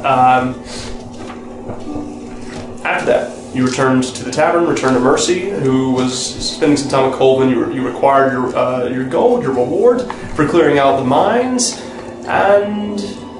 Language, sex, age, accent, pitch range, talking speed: English, male, 30-49, American, 125-145 Hz, 150 wpm